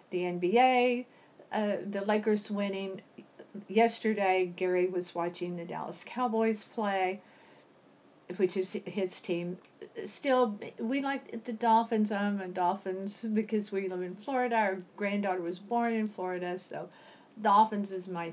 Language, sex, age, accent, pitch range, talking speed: English, female, 50-69, American, 185-225 Hz, 135 wpm